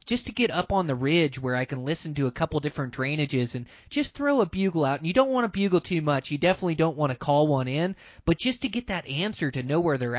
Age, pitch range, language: 20-39, 130-160 Hz, English